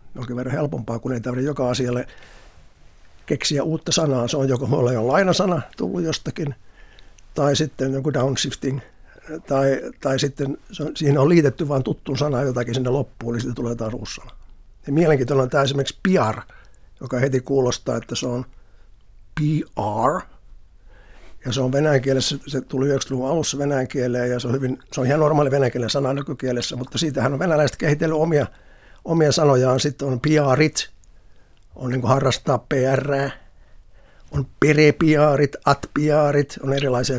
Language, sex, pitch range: Finnish, male, 125-145 Hz